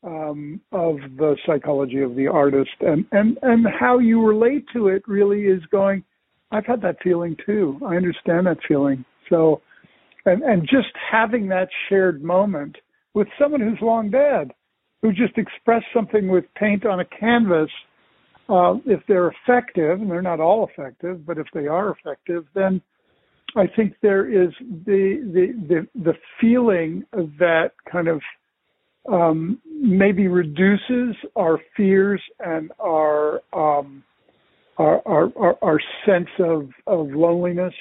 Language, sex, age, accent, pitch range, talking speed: English, male, 60-79, American, 160-205 Hz, 150 wpm